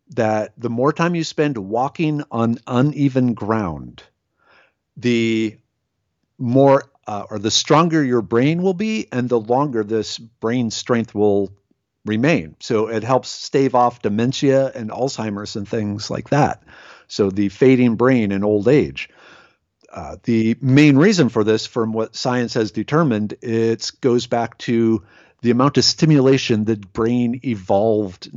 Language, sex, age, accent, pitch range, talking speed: English, male, 50-69, American, 110-135 Hz, 145 wpm